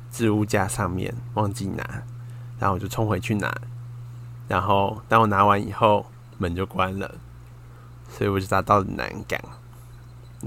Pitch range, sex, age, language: 100-120 Hz, male, 20-39, Chinese